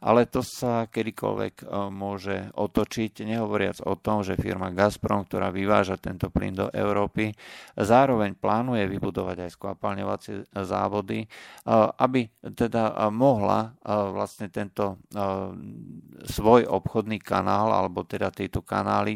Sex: male